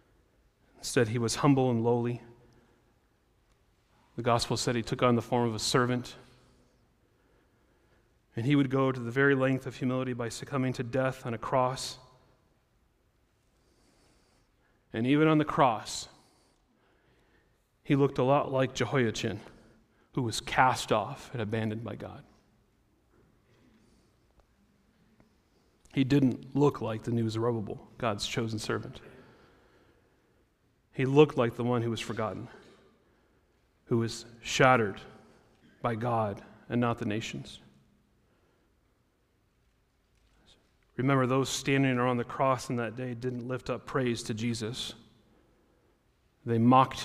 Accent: American